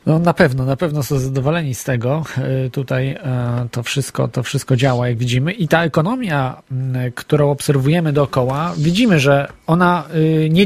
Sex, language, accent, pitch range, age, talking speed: male, Polish, native, 135-175 Hz, 40-59, 150 wpm